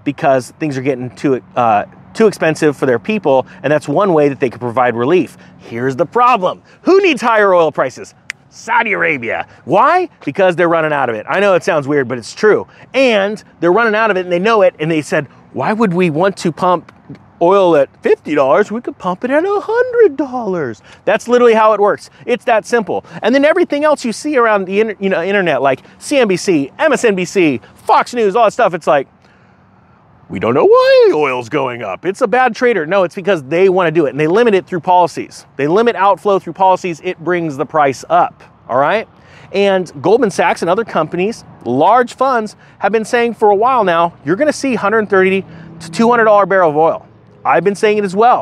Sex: male